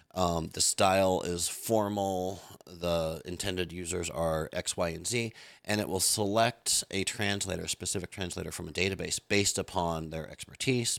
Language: English